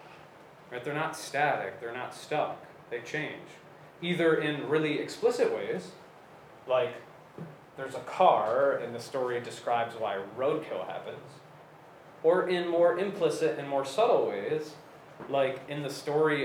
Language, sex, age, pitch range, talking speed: English, male, 30-49, 130-160 Hz, 140 wpm